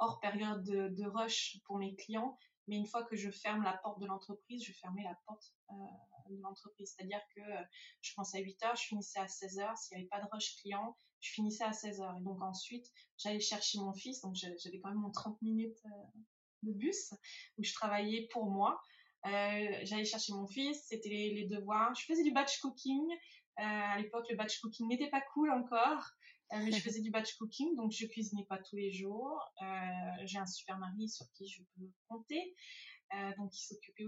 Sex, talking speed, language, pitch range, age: female, 210 wpm, French, 195-235 Hz, 20-39